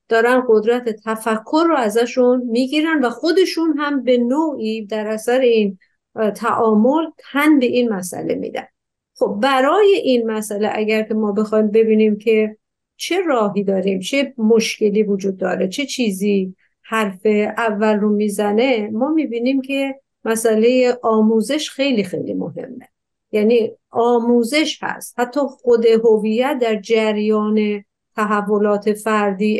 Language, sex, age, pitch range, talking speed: Persian, female, 50-69, 210-245 Hz, 120 wpm